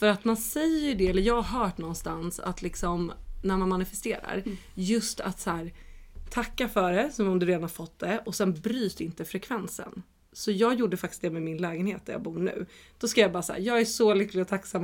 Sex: female